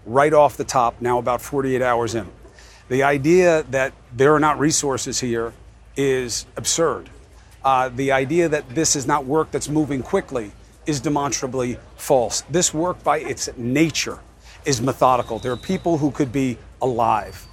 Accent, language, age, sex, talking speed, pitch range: American, English, 40-59, male, 160 wpm, 120-155 Hz